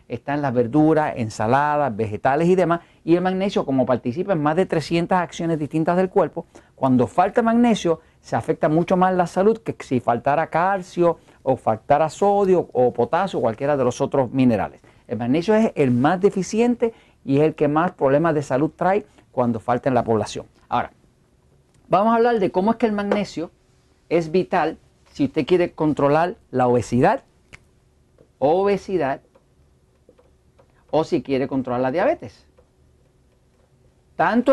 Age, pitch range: 50-69, 130-185 Hz